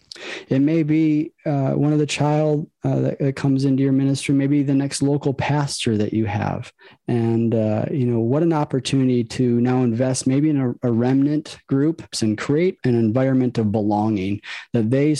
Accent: American